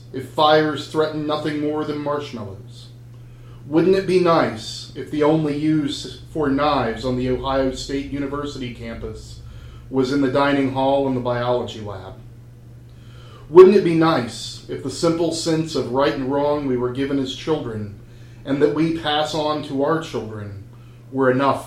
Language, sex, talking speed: English, male, 165 wpm